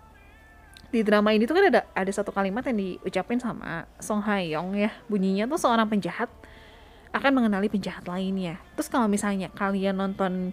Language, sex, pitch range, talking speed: Indonesian, female, 180-250 Hz, 160 wpm